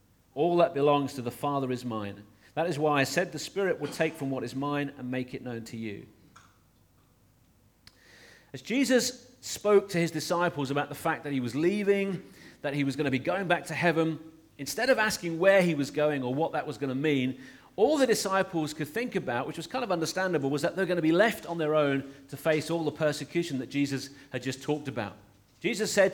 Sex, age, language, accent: male, 40-59, English, British